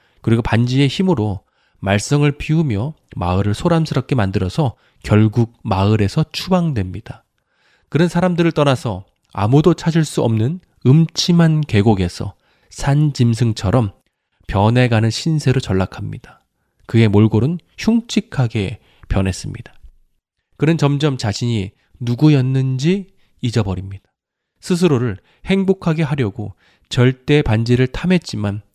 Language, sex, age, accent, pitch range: Korean, male, 20-39, native, 100-145 Hz